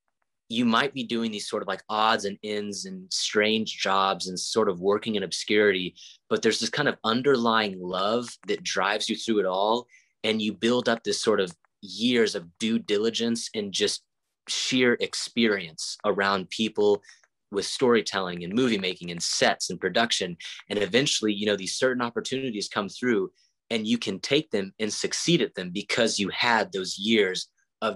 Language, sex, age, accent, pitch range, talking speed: English, male, 30-49, American, 100-120 Hz, 180 wpm